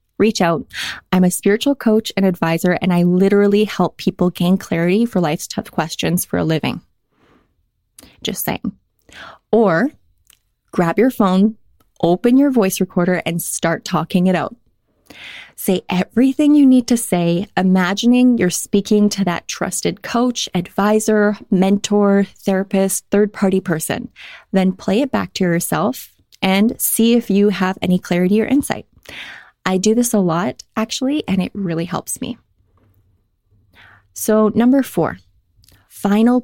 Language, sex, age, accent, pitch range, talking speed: English, female, 20-39, American, 175-220 Hz, 140 wpm